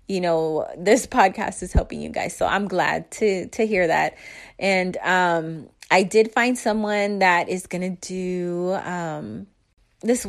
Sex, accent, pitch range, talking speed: female, American, 165-210 Hz, 155 wpm